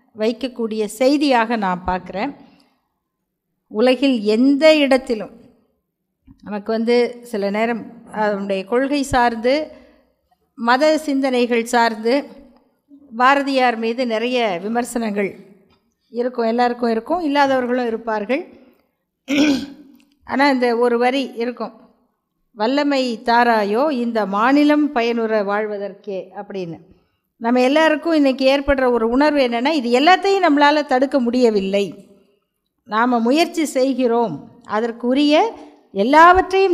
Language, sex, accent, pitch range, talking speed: Tamil, female, native, 225-280 Hz, 90 wpm